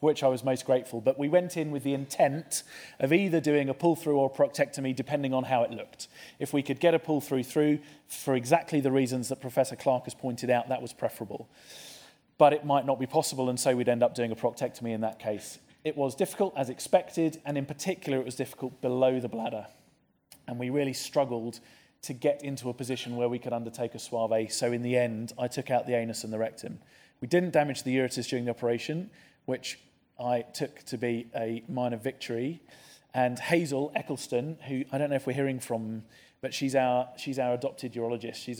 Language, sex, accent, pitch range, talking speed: English, male, British, 120-140 Hz, 215 wpm